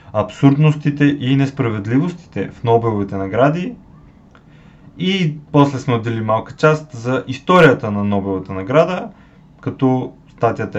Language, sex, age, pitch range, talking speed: Bulgarian, male, 20-39, 120-150 Hz, 105 wpm